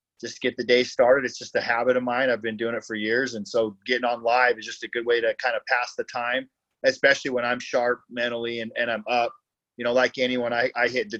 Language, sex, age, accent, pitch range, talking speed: English, male, 30-49, American, 115-135 Hz, 270 wpm